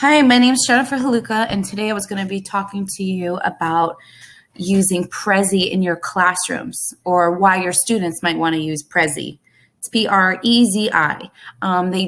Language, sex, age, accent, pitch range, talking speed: English, female, 20-39, American, 170-200 Hz, 170 wpm